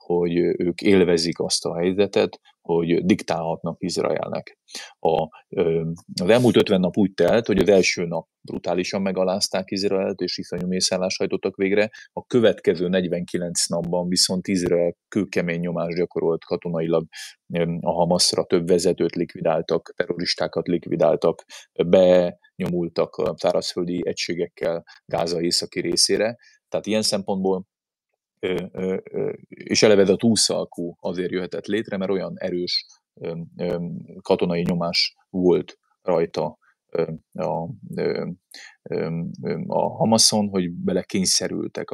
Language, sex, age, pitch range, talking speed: Hungarian, male, 30-49, 85-95 Hz, 110 wpm